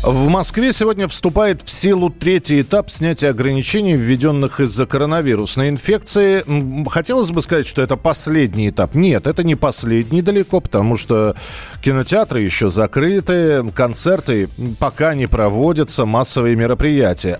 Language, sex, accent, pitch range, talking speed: Russian, male, native, 115-160 Hz, 130 wpm